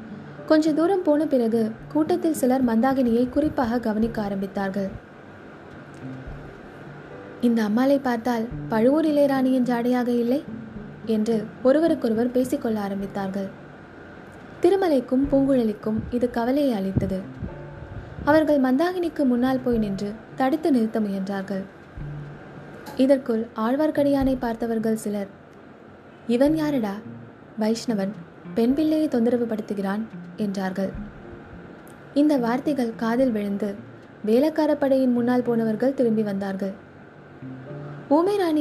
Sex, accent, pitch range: female, native, 210-270 Hz